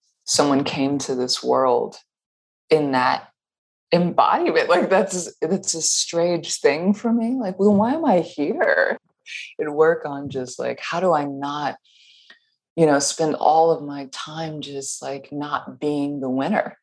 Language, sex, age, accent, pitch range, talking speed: English, female, 20-39, American, 140-190 Hz, 155 wpm